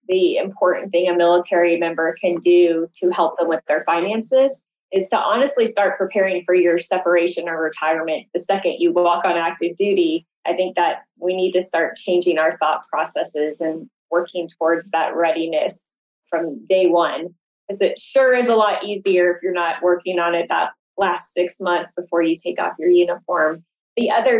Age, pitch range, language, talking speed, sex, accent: 20-39, 170-195 Hz, English, 185 wpm, female, American